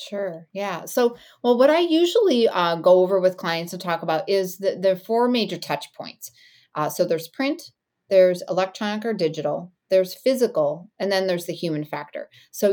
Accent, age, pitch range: American, 30-49, 170-210 Hz